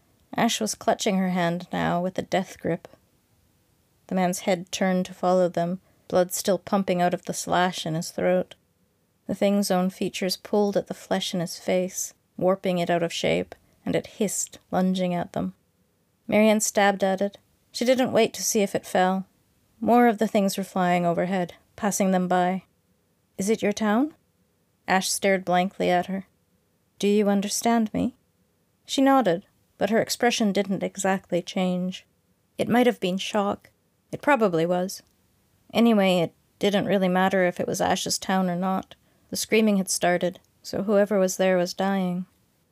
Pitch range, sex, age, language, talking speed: 180-205 Hz, female, 30-49, English, 170 wpm